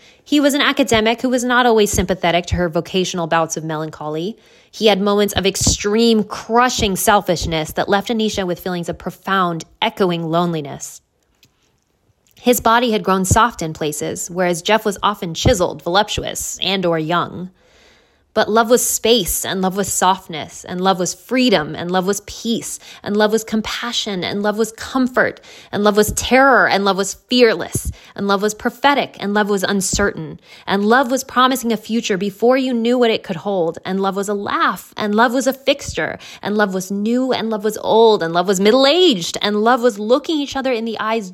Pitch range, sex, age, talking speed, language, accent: 185-240 Hz, female, 20-39, 190 wpm, English, American